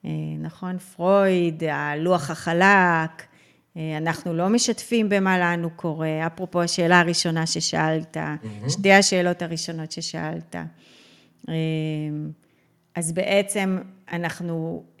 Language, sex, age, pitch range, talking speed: Hebrew, female, 30-49, 160-200 Hz, 85 wpm